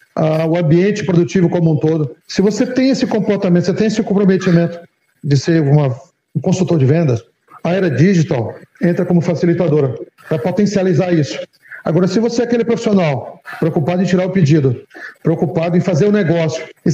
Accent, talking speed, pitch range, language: Brazilian, 170 wpm, 155-190 Hz, Portuguese